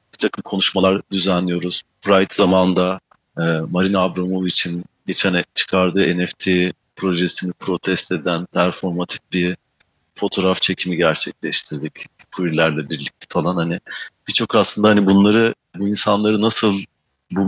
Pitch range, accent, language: 90-100 Hz, native, Turkish